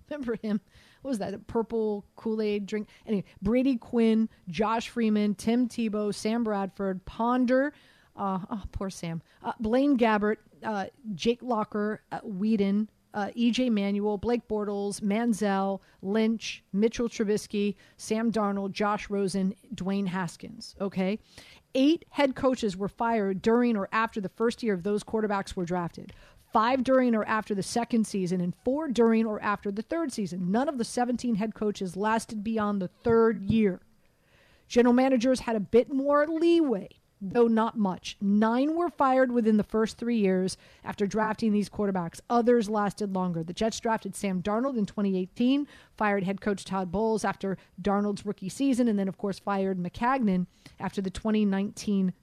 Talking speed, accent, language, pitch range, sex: 160 wpm, American, English, 195-235 Hz, female